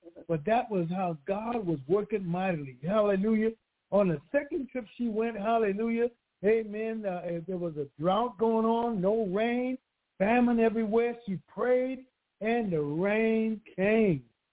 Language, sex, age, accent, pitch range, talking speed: English, male, 60-79, American, 155-205 Hz, 140 wpm